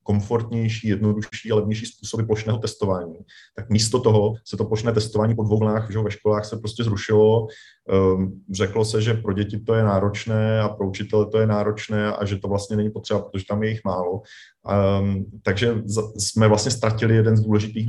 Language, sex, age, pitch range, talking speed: Czech, male, 30-49, 100-110 Hz, 180 wpm